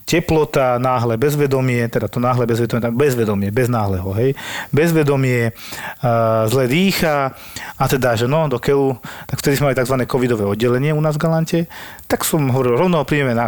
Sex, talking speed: male, 175 wpm